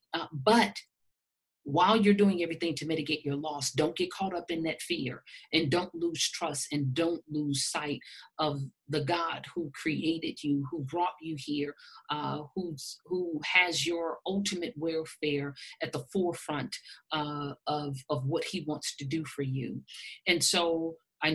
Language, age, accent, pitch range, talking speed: English, 50-69, American, 145-170 Hz, 165 wpm